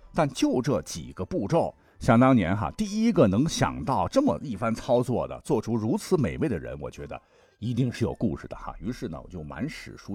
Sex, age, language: male, 50-69, Chinese